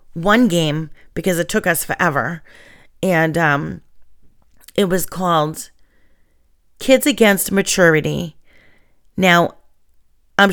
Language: English